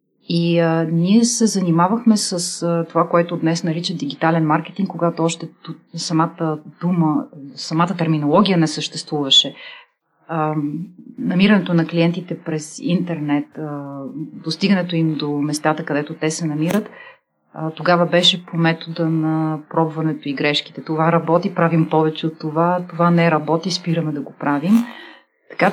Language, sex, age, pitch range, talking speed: Bulgarian, female, 30-49, 160-190 Hz, 140 wpm